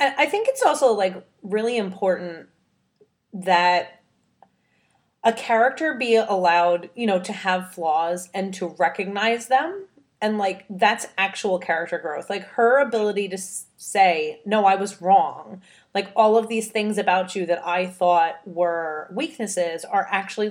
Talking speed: 145 wpm